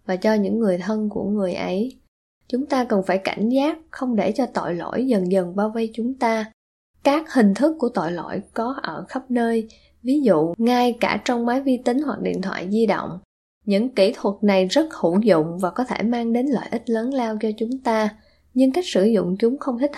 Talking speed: 220 wpm